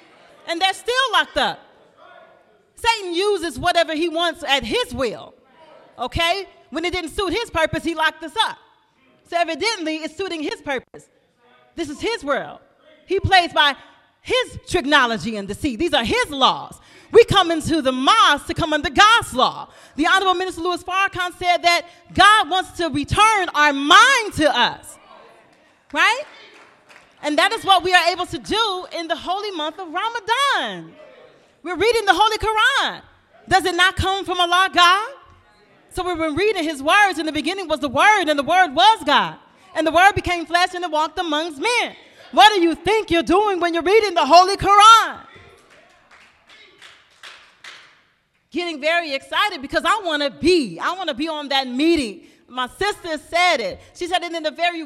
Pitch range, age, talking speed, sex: 315-385 Hz, 40-59, 175 wpm, female